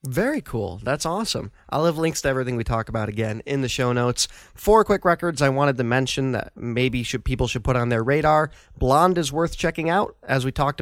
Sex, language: male, English